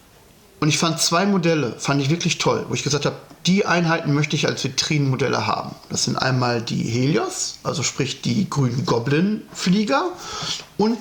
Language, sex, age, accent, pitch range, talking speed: German, male, 40-59, German, 145-175 Hz, 170 wpm